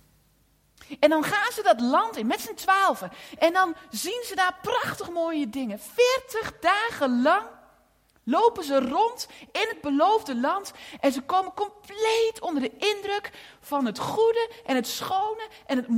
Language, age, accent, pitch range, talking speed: Dutch, 40-59, Dutch, 265-415 Hz, 160 wpm